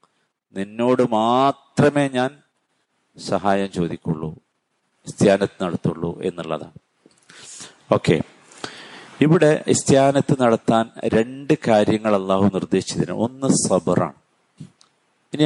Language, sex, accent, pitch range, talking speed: Malayalam, male, native, 100-130 Hz, 70 wpm